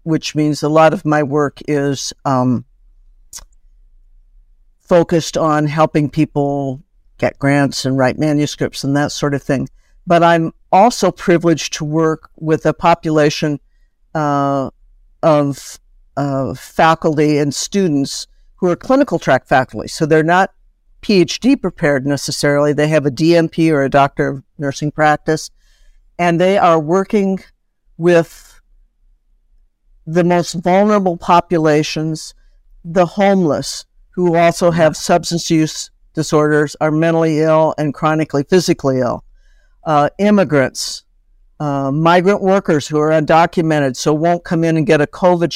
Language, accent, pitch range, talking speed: English, American, 145-170 Hz, 130 wpm